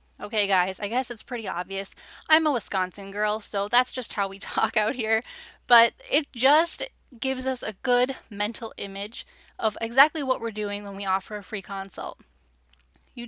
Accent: American